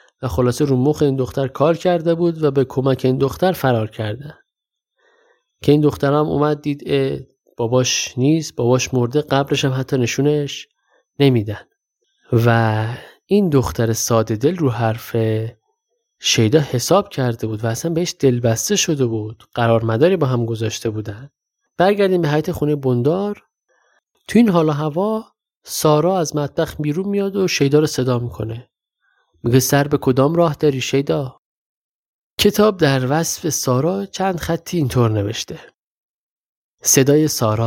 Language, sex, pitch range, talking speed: Persian, male, 115-150 Hz, 145 wpm